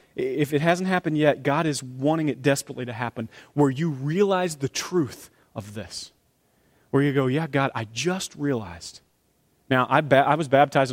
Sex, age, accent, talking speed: male, 30-49, American, 180 wpm